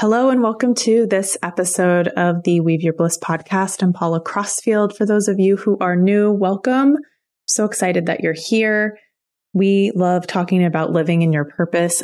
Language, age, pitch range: English, 20-39, 170-205 Hz